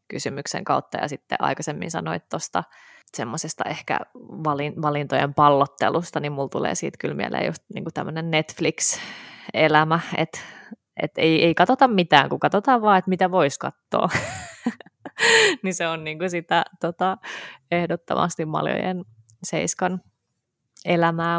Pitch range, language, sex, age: 150-185 Hz, Finnish, female, 20-39